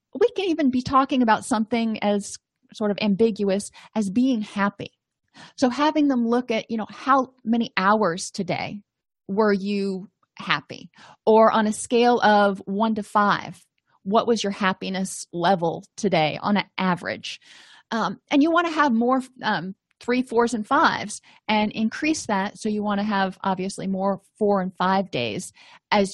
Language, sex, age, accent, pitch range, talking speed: English, female, 30-49, American, 200-250 Hz, 165 wpm